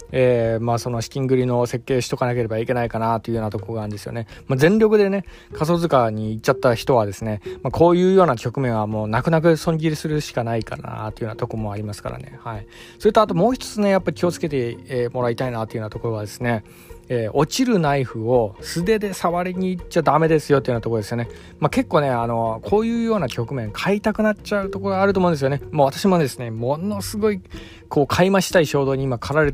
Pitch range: 115-170 Hz